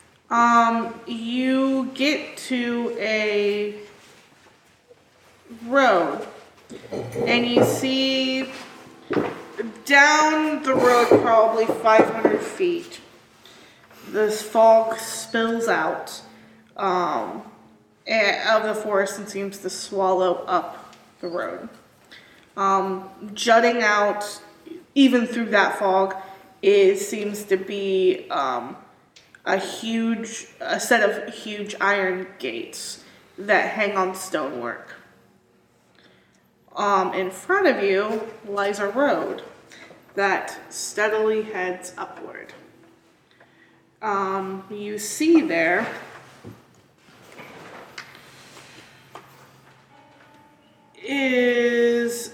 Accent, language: American, English